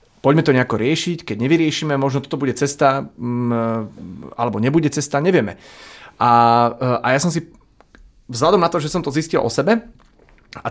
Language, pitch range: Slovak, 115-140 Hz